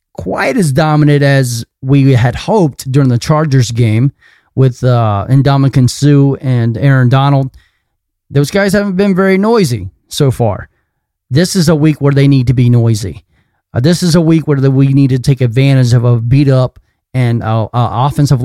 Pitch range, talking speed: 120-155 Hz, 170 wpm